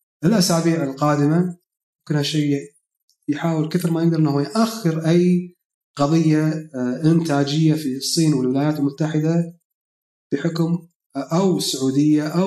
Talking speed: 95 wpm